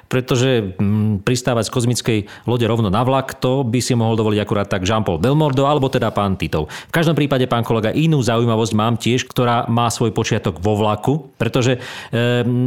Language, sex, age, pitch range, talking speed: Slovak, male, 40-59, 110-135 Hz, 185 wpm